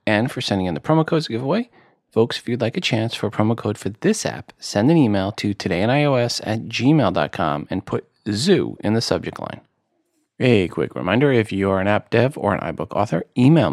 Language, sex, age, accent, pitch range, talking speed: English, male, 40-59, American, 95-120 Hz, 215 wpm